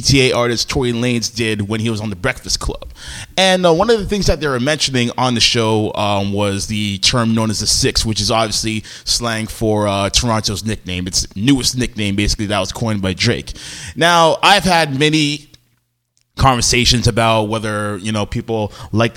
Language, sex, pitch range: English, male, 110-125 Hz